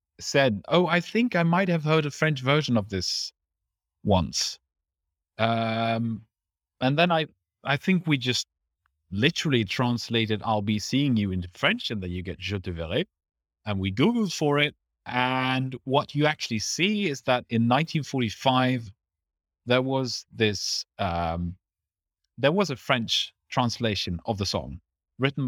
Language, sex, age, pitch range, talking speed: English, male, 30-49, 95-130 Hz, 150 wpm